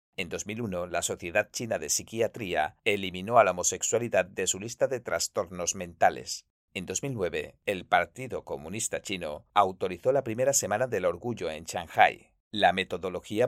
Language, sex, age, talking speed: Spanish, male, 50-69, 145 wpm